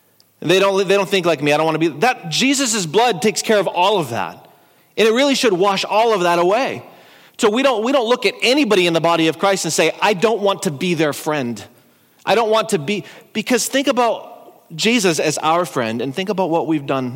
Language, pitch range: English, 150-200 Hz